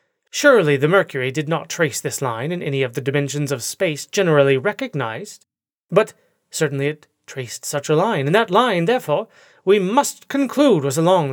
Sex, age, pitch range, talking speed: male, 30-49, 145-230 Hz, 175 wpm